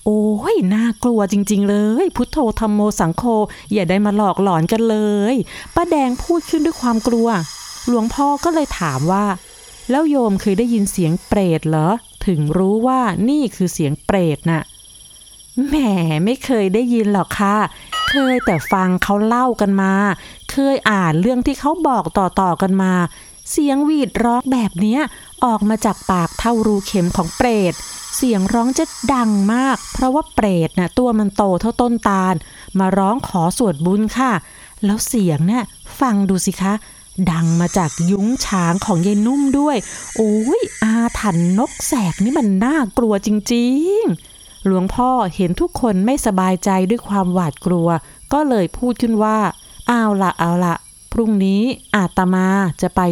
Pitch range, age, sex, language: 185-240 Hz, 30-49, female, Thai